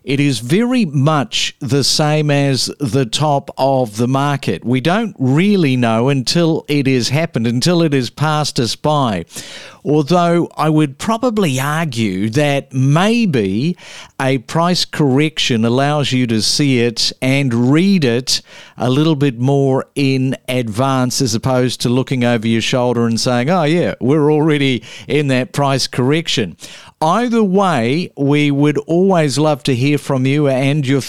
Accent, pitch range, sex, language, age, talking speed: Australian, 125-155 Hz, male, English, 50-69, 150 wpm